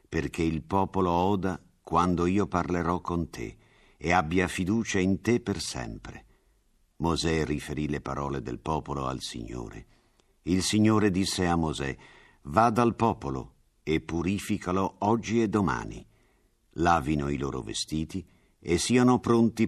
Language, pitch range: Italian, 75-95 Hz